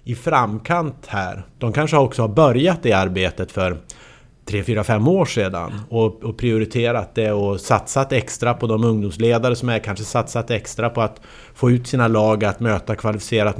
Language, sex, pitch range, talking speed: English, male, 105-130 Hz, 170 wpm